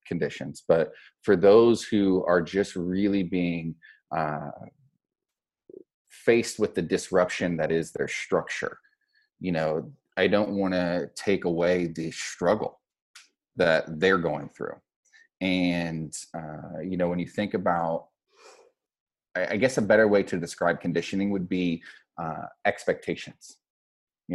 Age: 30-49